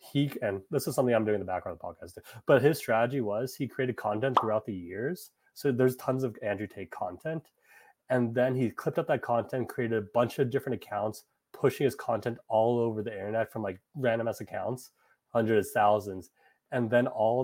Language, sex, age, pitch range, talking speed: English, male, 30-49, 105-130 Hz, 210 wpm